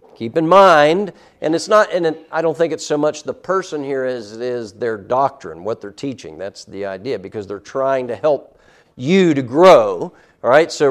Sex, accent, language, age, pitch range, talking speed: male, American, English, 50-69, 135-165 Hz, 215 wpm